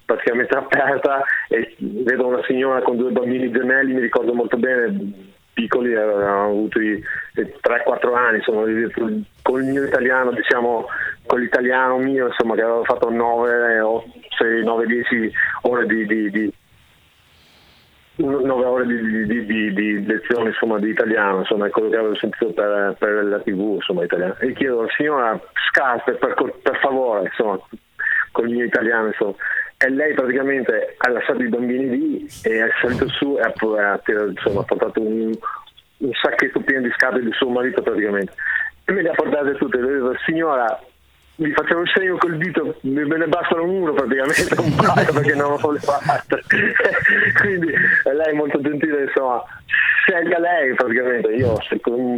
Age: 30-49